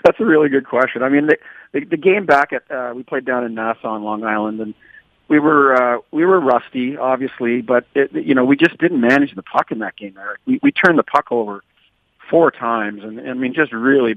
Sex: male